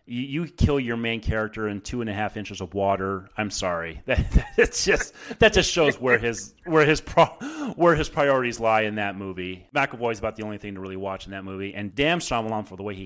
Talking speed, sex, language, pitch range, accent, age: 245 wpm, male, English, 95-130 Hz, American, 30-49